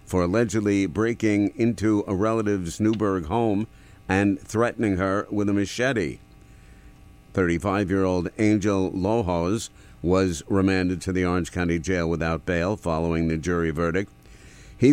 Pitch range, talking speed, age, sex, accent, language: 85-105 Hz, 125 wpm, 50-69, male, American, English